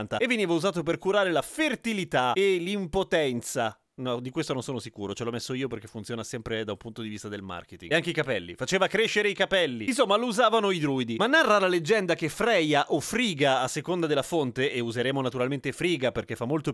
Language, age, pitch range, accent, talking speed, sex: Italian, 30-49, 140-225 Hz, native, 220 wpm, male